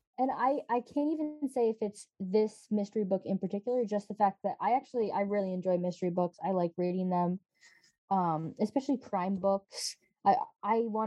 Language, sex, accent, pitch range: English, female, American, 195-255 Hz